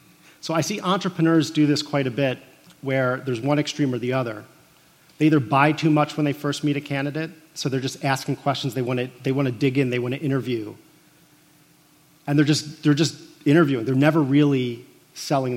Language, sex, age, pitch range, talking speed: English, male, 40-59, 135-160 Hz, 200 wpm